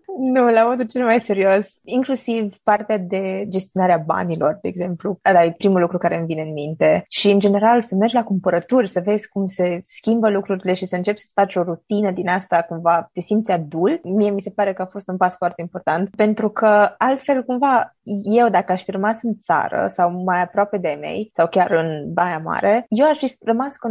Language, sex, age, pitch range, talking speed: Romanian, female, 20-39, 185-240 Hz, 210 wpm